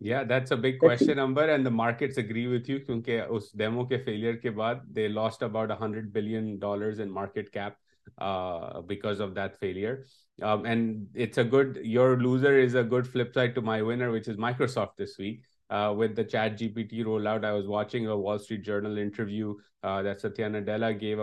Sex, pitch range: male, 100-115 Hz